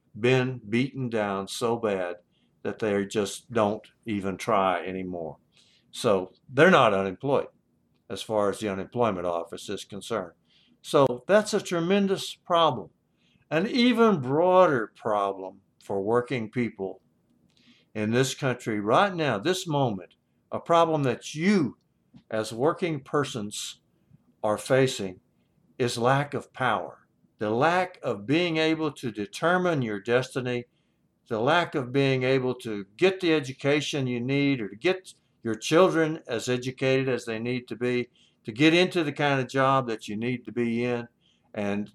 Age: 60-79